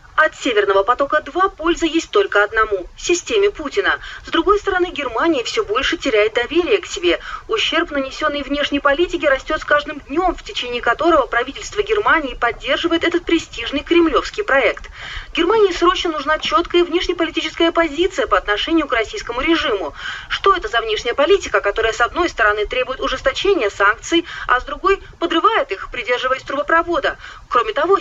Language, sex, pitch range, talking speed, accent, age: Russian, female, 270-355 Hz, 150 wpm, native, 30-49